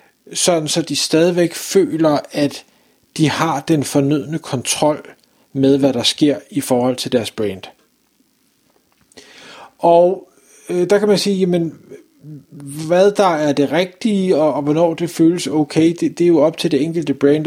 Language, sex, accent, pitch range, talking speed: Danish, male, native, 140-175 Hz, 160 wpm